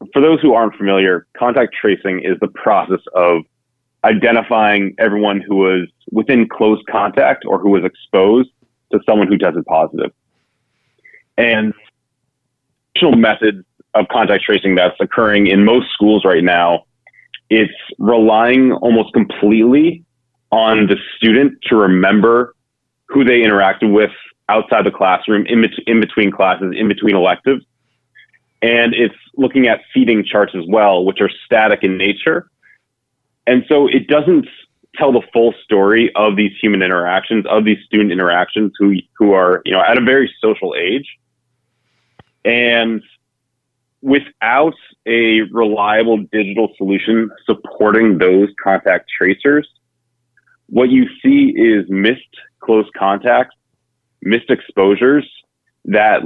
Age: 30-49